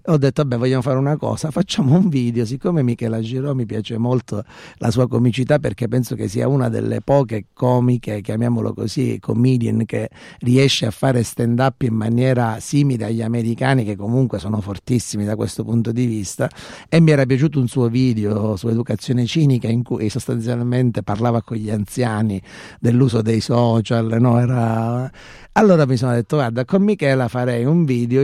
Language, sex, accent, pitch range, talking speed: Italian, male, native, 110-130 Hz, 175 wpm